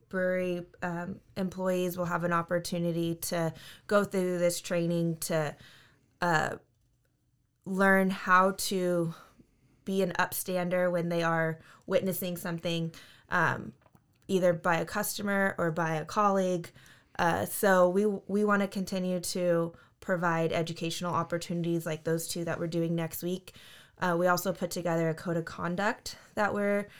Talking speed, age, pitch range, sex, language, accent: 140 wpm, 20-39, 165-185 Hz, female, English, American